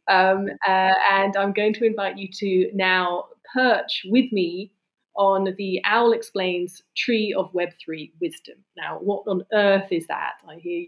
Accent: British